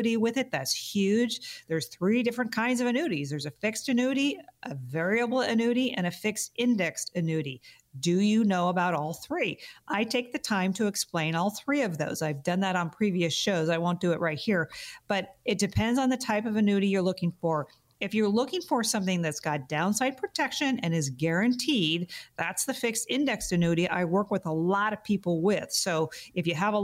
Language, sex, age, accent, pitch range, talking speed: English, female, 50-69, American, 175-225 Hz, 205 wpm